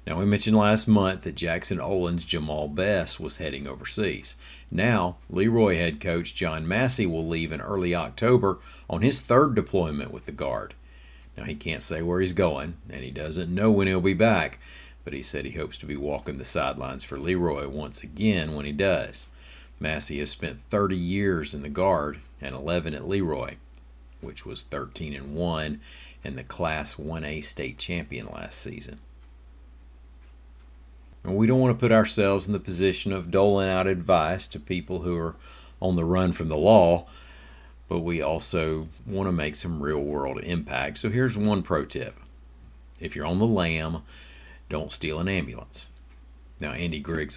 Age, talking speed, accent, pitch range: 50-69, 170 wpm, American, 65-95 Hz